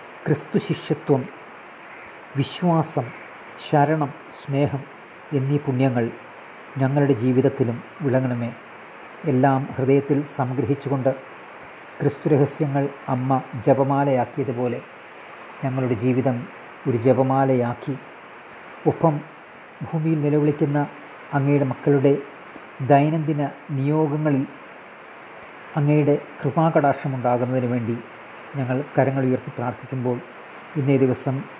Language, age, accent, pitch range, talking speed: Malayalam, 40-59, native, 120-140 Hz, 70 wpm